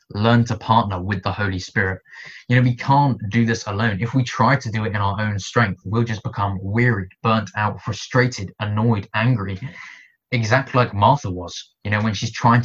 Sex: male